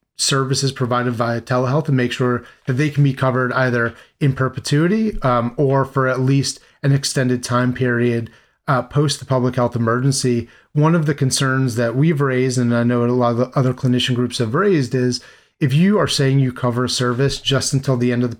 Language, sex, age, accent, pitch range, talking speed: English, male, 30-49, American, 120-140 Hz, 205 wpm